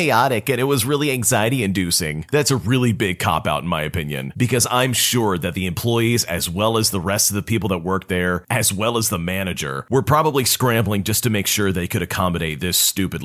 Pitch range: 95-125 Hz